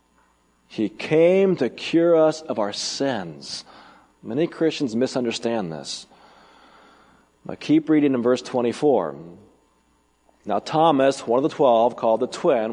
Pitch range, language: 115-160 Hz, English